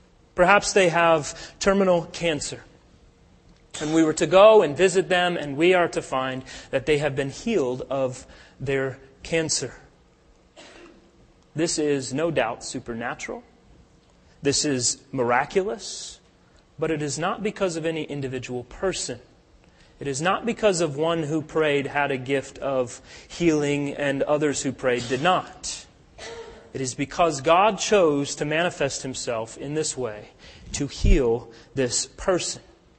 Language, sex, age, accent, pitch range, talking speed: English, male, 30-49, American, 135-185 Hz, 140 wpm